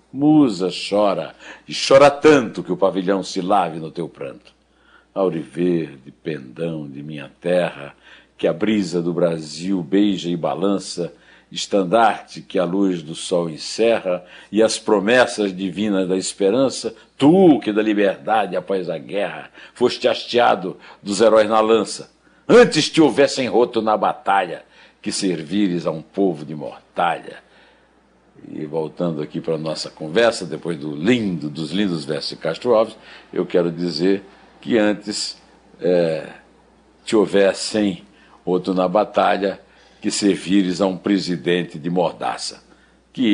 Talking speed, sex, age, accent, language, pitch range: 135 wpm, male, 60-79, Brazilian, Portuguese, 85-110 Hz